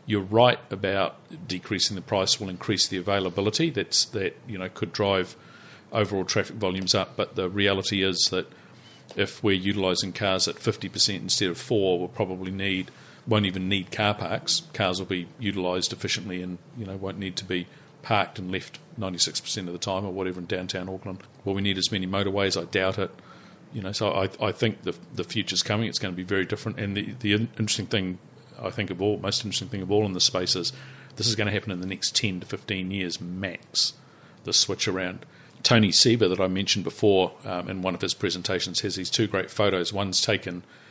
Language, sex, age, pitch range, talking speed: English, male, 50-69, 95-105 Hz, 215 wpm